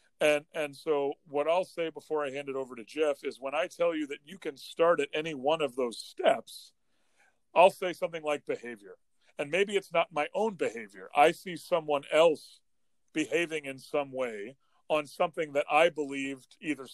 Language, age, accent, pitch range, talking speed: English, 40-59, American, 135-165 Hz, 190 wpm